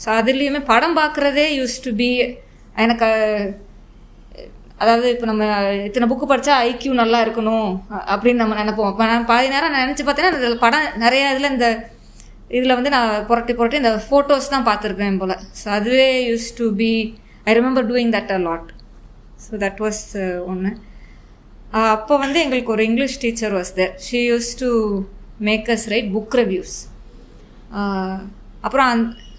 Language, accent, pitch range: Tamil, native, 215-265 Hz